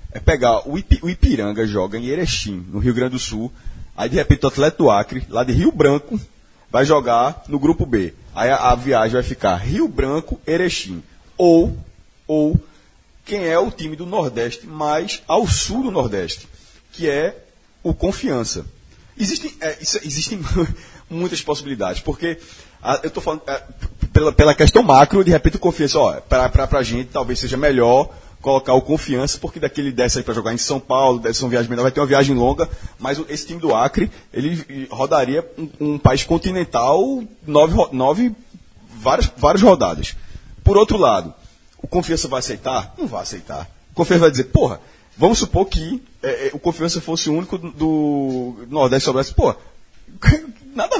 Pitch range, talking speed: 125-165 Hz, 175 wpm